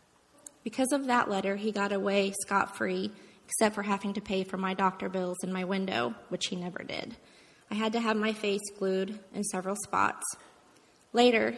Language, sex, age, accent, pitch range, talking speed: English, female, 20-39, American, 195-220 Hz, 180 wpm